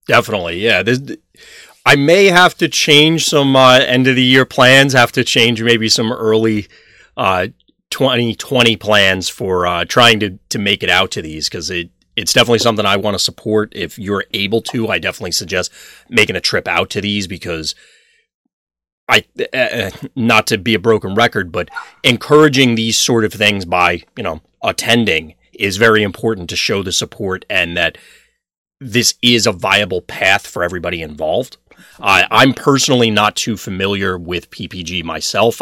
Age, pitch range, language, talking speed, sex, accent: 30-49, 90-120 Hz, English, 170 wpm, male, American